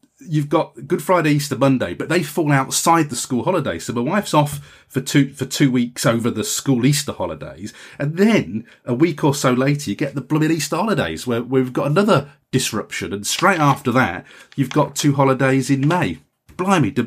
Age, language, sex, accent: 30-49, English, male, British